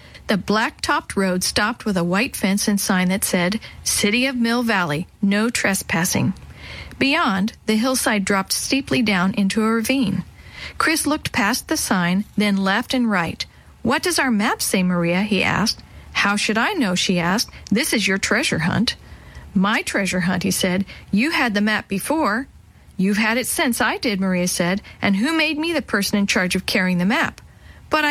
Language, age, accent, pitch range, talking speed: English, 50-69, American, 185-245 Hz, 185 wpm